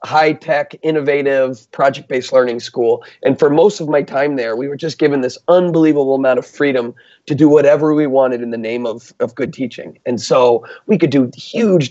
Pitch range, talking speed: 135-165 Hz, 195 wpm